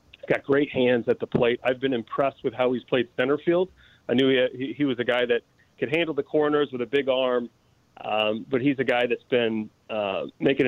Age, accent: 40-59, American